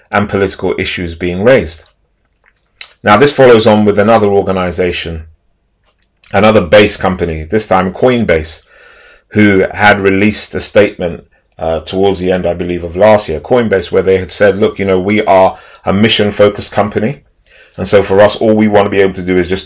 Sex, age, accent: male, 30-49, British